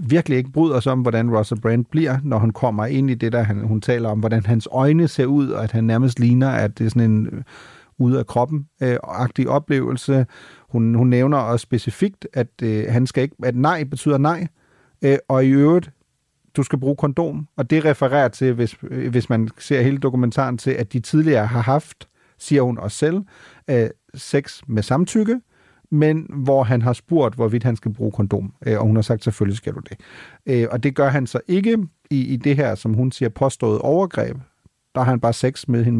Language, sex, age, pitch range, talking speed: Danish, male, 40-59, 120-150 Hz, 210 wpm